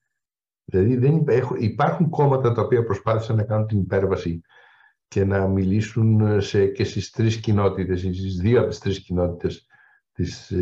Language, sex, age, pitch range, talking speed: Greek, male, 60-79, 105-140 Hz, 145 wpm